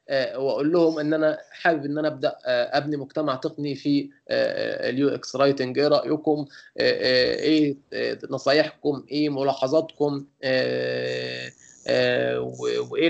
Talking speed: 100 wpm